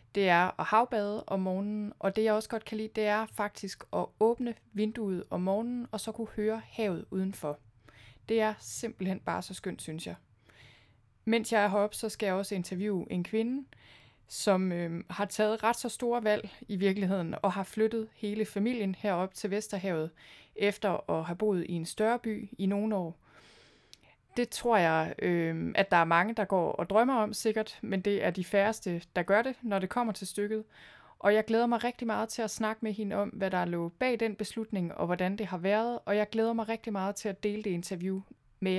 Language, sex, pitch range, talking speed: Danish, female, 180-220 Hz, 210 wpm